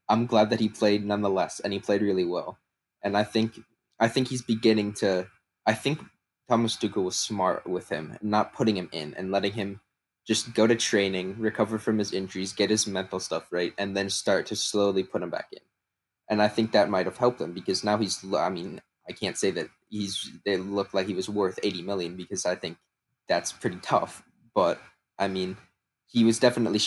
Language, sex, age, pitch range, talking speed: English, male, 20-39, 95-105 Hz, 210 wpm